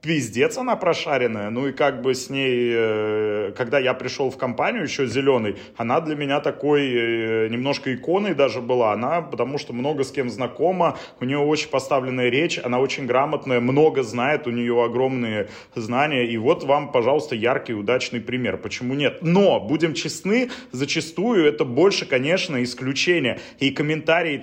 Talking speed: 155 wpm